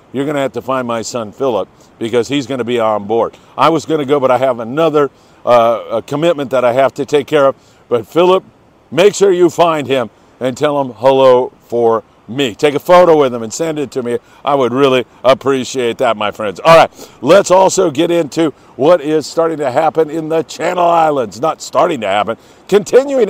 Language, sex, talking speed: English, male, 215 wpm